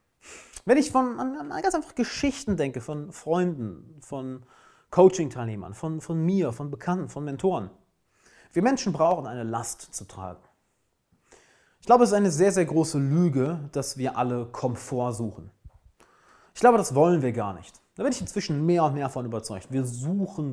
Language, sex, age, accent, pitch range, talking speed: German, male, 30-49, German, 115-190 Hz, 170 wpm